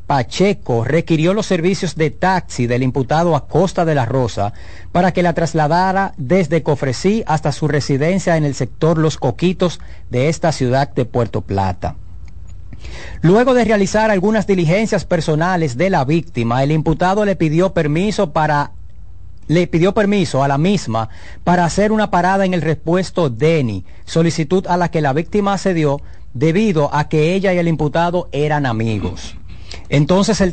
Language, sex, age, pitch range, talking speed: Spanish, male, 40-59, 140-185 Hz, 155 wpm